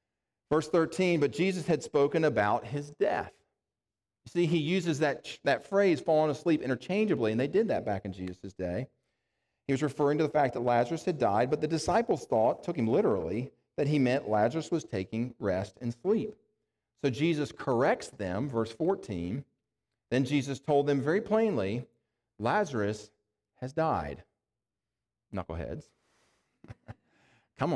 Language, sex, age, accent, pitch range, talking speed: English, male, 40-59, American, 115-150 Hz, 150 wpm